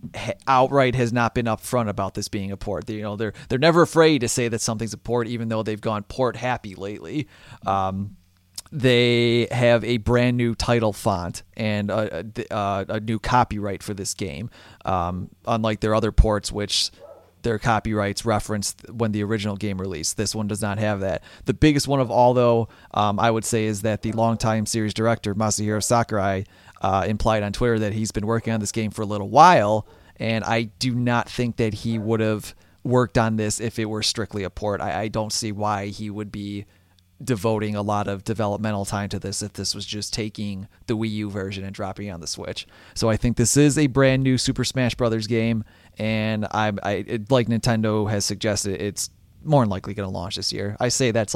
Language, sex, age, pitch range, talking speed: English, male, 30-49, 100-115 Hz, 210 wpm